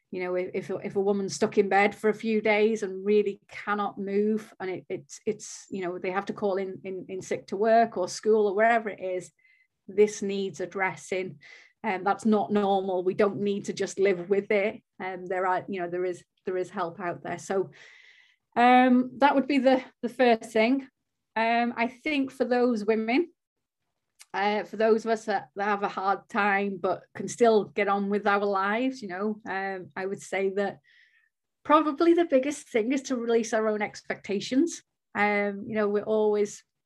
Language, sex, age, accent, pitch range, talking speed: English, female, 30-49, British, 195-230 Hz, 195 wpm